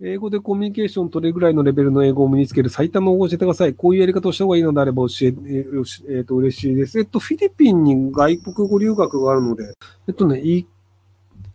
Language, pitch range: Japanese, 125-185 Hz